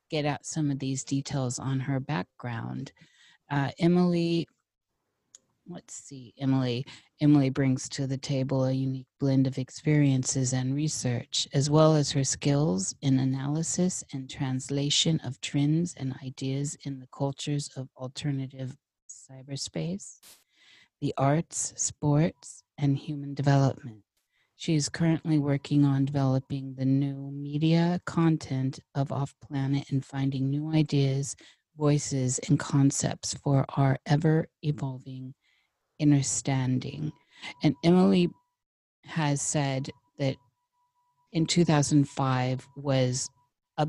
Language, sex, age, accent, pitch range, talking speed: English, female, 40-59, American, 130-150 Hz, 115 wpm